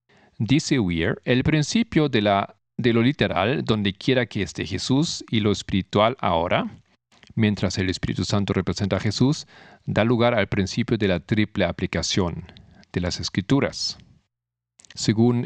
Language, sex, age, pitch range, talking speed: Spanish, male, 50-69, 95-120 Hz, 140 wpm